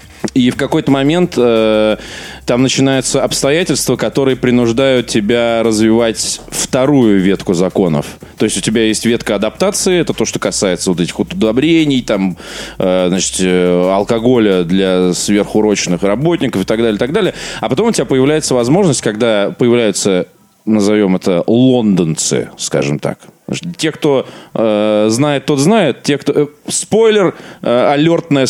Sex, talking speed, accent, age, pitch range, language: male, 145 wpm, native, 20-39, 110-160 Hz, Russian